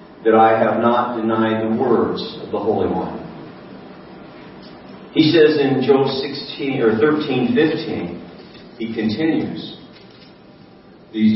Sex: male